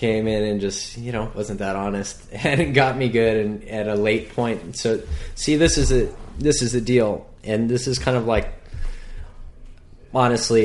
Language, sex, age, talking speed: English, male, 20-39, 205 wpm